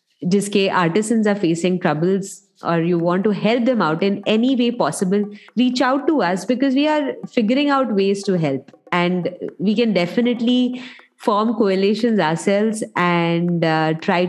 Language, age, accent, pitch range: English, 20-39, Indian, 175-220 Hz